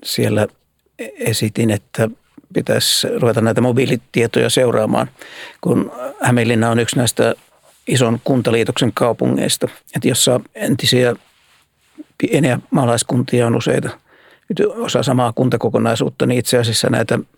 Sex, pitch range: male, 115-130 Hz